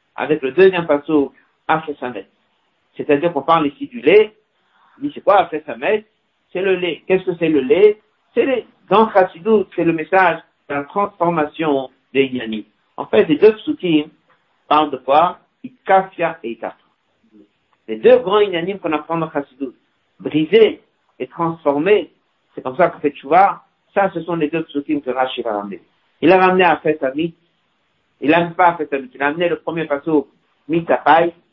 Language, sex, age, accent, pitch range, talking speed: French, male, 60-79, French, 140-175 Hz, 175 wpm